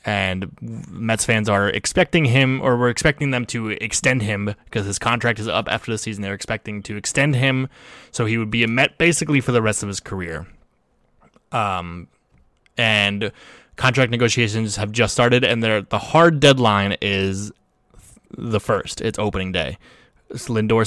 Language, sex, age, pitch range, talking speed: English, male, 20-39, 100-125 Hz, 165 wpm